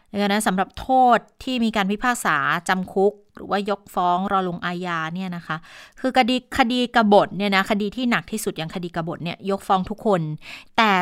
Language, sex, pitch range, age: Thai, female, 190-220 Hz, 30-49